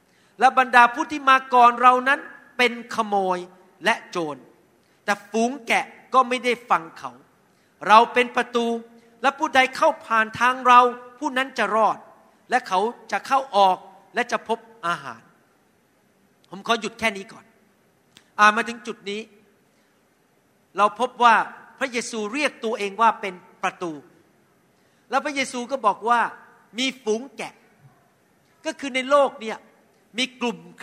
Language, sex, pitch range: Thai, male, 195-245 Hz